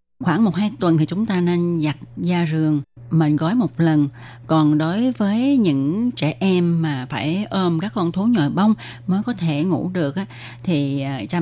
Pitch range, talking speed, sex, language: 150-190 Hz, 190 wpm, female, Vietnamese